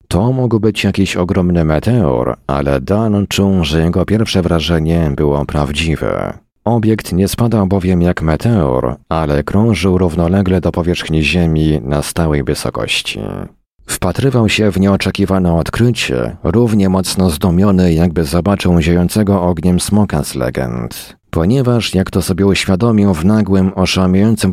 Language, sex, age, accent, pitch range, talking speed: Polish, male, 40-59, native, 85-110 Hz, 130 wpm